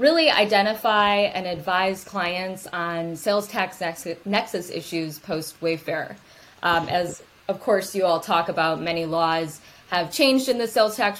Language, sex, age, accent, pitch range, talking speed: English, female, 20-39, American, 170-205 Hz, 140 wpm